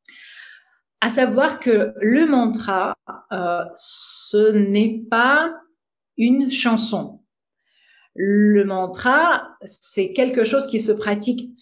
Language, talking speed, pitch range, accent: French, 100 wpm, 195-250 Hz, French